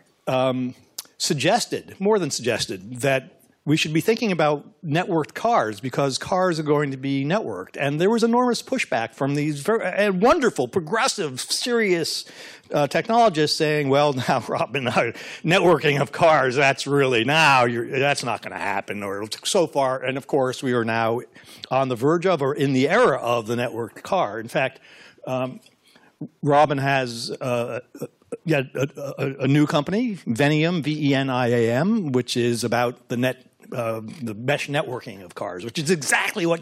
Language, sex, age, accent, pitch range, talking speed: English, male, 60-79, American, 125-155 Hz, 175 wpm